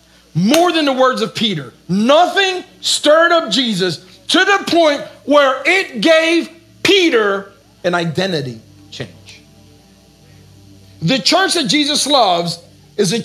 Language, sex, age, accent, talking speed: English, male, 50-69, American, 120 wpm